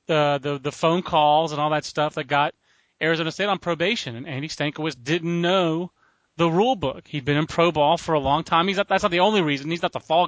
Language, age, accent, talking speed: English, 30-49, American, 250 wpm